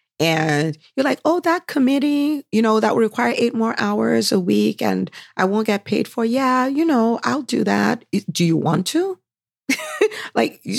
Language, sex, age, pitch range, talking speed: English, female, 40-59, 145-210 Hz, 195 wpm